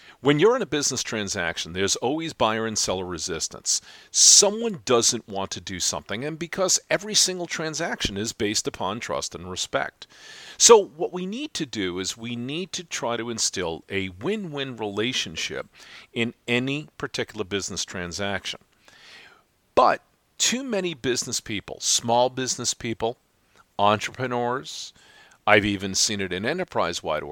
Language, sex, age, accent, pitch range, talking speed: English, male, 50-69, American, 105-150 Hz, 145 wpm